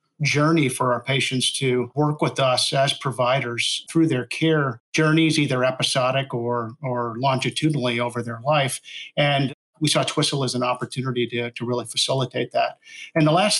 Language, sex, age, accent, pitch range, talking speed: English, male, 50-69, American, 125-145 Hz, 165 wpm